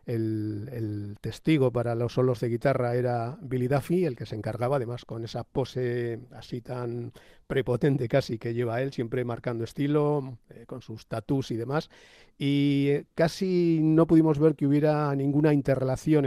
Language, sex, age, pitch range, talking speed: Spanish, male, 50-69, 120-145 Hz, 160 wpm